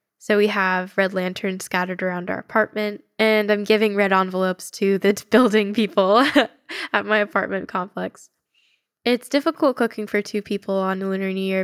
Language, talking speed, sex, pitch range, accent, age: English, 165 wpm, female, 195-235 Hz, American, 10-29